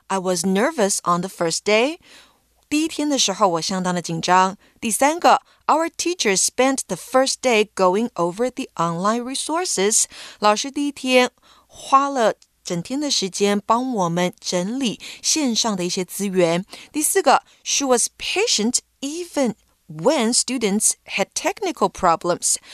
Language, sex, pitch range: Chinese, female, 185-255 Hz